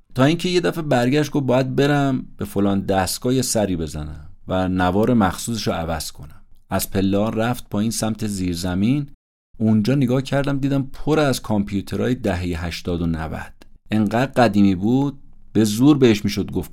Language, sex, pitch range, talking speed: Persian, male, 90-120 Hz, 160 wpm